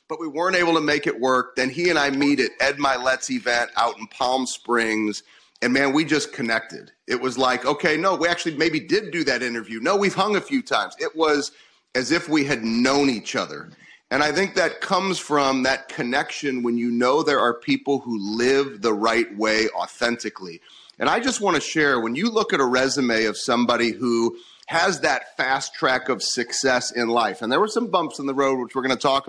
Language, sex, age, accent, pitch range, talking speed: English, male, 30-49, American, 120-155 Hz, 220 wpm